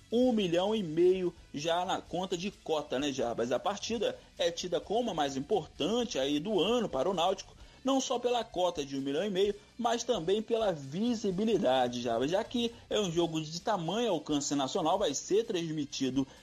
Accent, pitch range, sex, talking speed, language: Brazilian, 155-220 Hz, male, 185 wpm, Portuguese